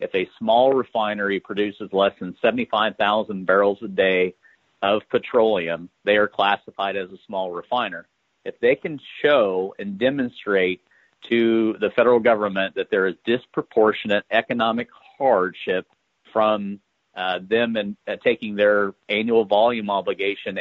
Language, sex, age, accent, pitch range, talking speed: English, male, 40-59, American, 100-115 Hz, 135 wpm